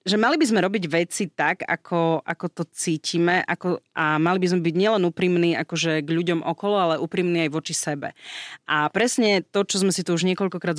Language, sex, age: Slovak, female, 30-49